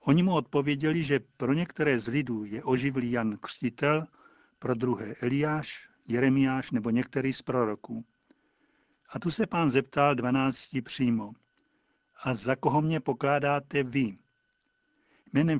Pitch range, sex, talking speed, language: 130-150 Hz, male, 130 wpm, Czech